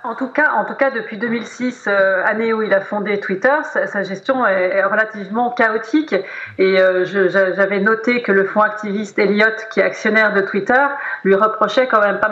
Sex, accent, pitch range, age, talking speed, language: female, French, 200-255 Hz, 40-59, 205 wpm, French